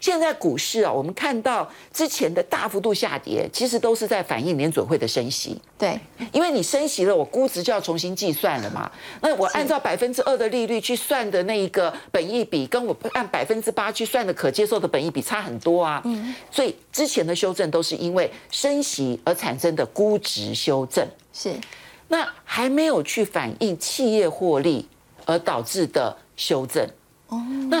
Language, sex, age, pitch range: Chinese, male, 50-69, 170-255 Hz